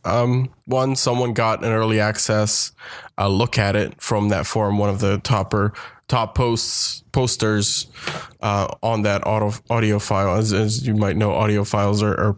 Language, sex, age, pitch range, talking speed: English, male, 20-39, 105-120 Hz, 175 wpm